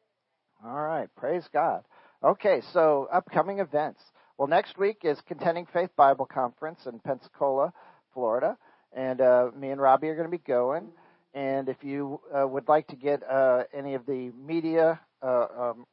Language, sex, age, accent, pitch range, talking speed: English, male, 50-69, American, 130-155 Hz, 165 wpm